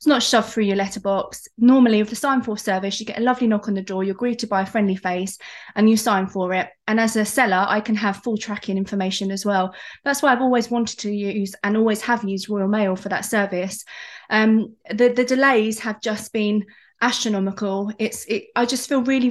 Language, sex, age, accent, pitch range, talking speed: English, female, 20-39, British, 205-235 Hz, 225 wpm